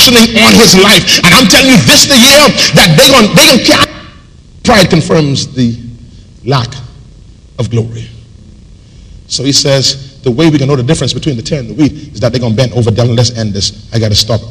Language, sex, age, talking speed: English, male, 40-59, 210 wpm